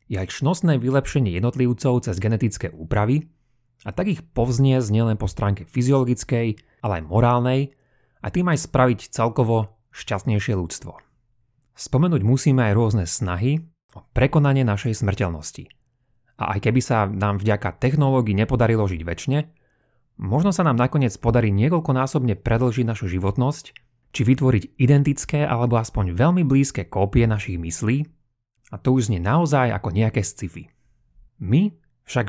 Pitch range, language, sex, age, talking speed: 110-135 Hz, Slovak, male, 30-49, 140 wpm